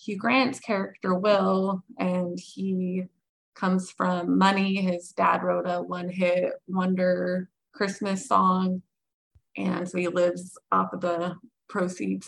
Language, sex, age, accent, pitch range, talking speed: English, female, 20-39, American, 175-190 Hz, 120 wpm